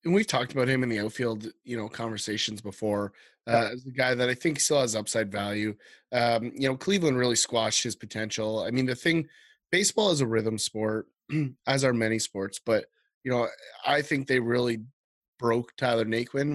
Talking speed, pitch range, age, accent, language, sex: 195 wpm, 110-135 Hz, 20-39, American, English, male